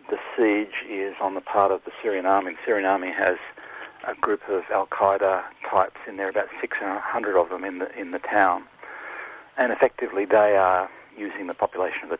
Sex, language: male, English